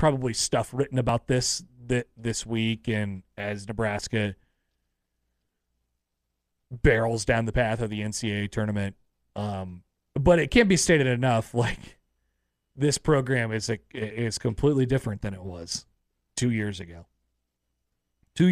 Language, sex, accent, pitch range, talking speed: English, male, American, 100-150 Hz, 135 wpm